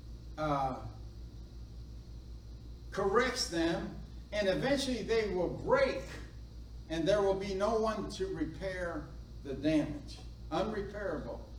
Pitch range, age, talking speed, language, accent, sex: 140-195 Hz, 50-69, 100 wpm, English, American, male